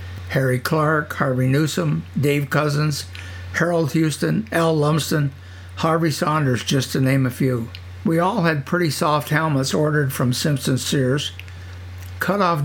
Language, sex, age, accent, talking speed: English, male, 60-79, American, 140 wpm